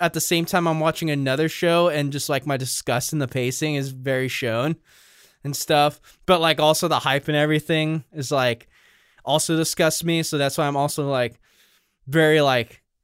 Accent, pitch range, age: American, 150-200 Hz, 10-29